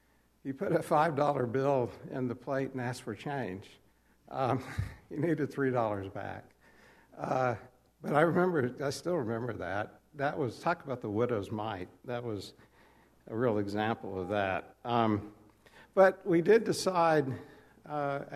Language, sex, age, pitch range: English, male, 60-79, 110-145 Hz